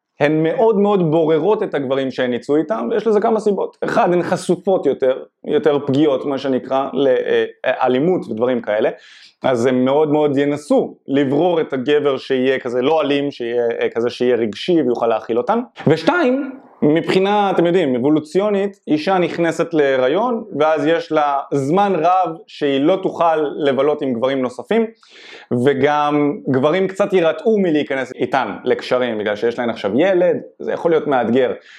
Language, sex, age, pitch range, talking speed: Hebrew, male, 20-39, 135-200 Hz, 150 wpm